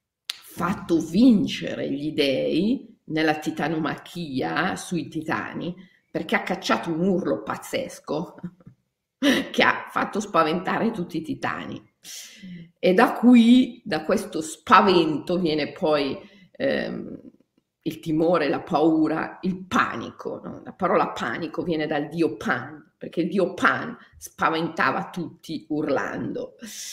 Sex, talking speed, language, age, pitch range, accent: female, 110 wpm, Italian, 40-59, 165-265 Hz, native